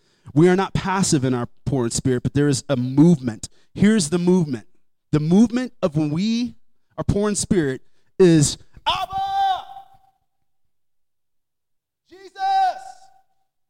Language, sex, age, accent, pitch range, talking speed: English, male, 30-49, American, 140-180 Hz, 125 wpm